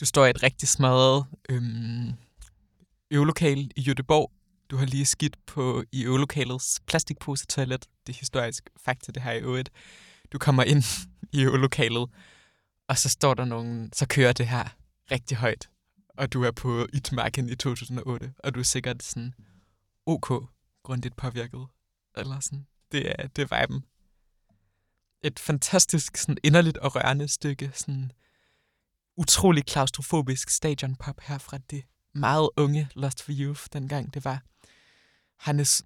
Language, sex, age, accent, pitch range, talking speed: Danish, male, 20-39, native, 125-150 Hz, 145 wpm